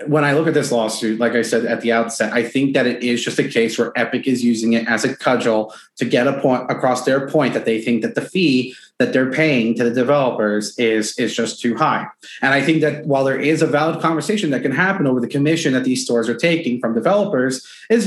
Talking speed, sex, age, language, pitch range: 250 wpm, male, 30-49, English, 125-170 Hz